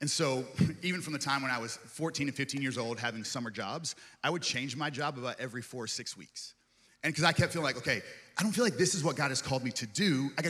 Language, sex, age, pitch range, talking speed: English, male, 30-49, 120-150 Hz, 285 wpm